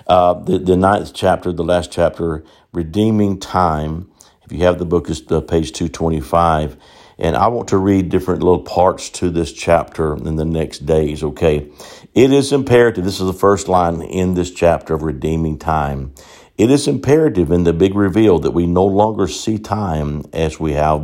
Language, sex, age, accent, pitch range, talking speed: English, male, 50-69, American, 80-100 Hz, 185 wpm